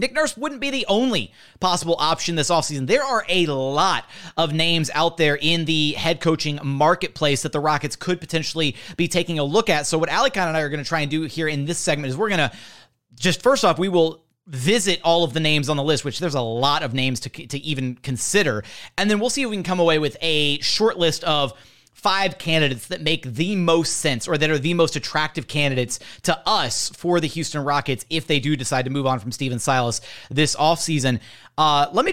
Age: 30-49